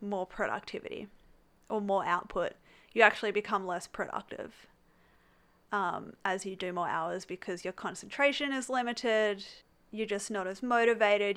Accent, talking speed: Australian, 135 wpm